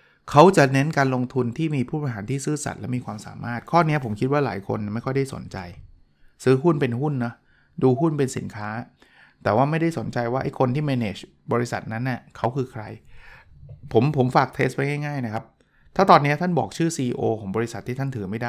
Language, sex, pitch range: Thai, male, 120-150 Hz